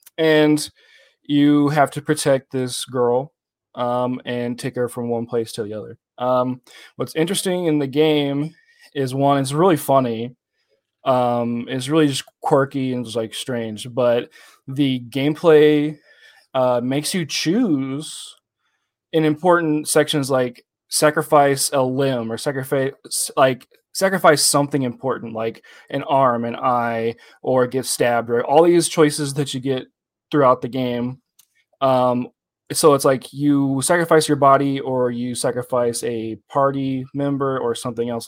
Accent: American